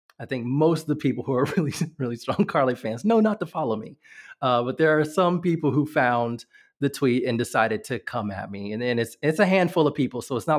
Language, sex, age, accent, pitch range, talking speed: English, male, 30-49, American, 125-165 Hz, 255 wpm